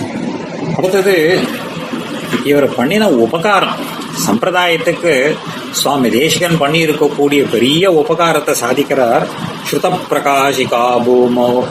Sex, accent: male, native